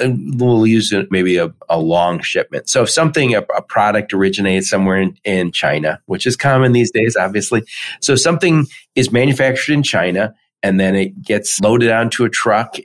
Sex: male